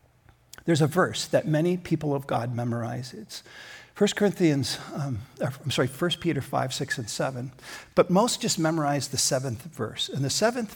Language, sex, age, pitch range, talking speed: English, male, 50-69, 125-160 Hz, 175 wpm